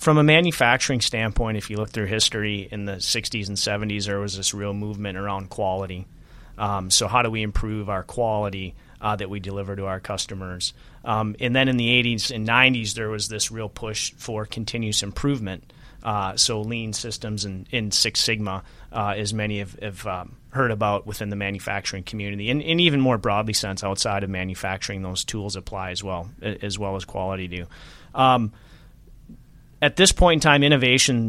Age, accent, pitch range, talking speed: 30-49, American, 100-120 Hz, 190 wpm